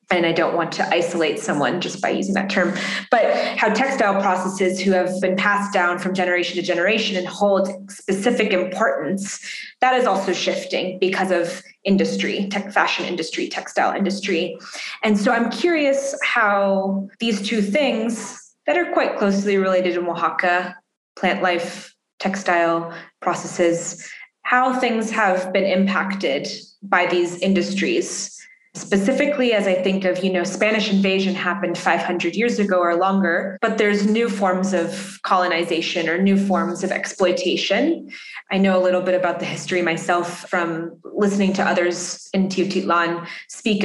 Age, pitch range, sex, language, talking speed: 20-39, 175-200 Hz, female, English, 150 wpm